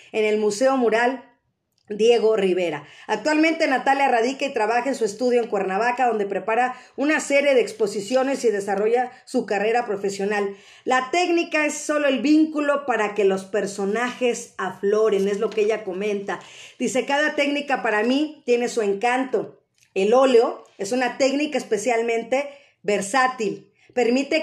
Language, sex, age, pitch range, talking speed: Spanish, female, 40-59, 220-275 Hz, 145 wpm